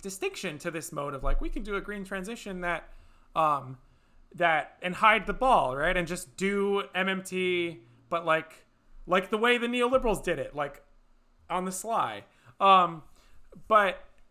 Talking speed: 165 wpm